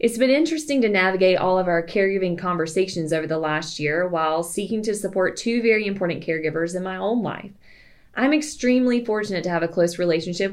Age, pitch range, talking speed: 20-39, 175-215 Hz, 195 wpm